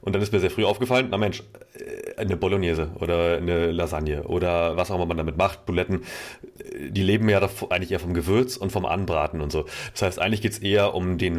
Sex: male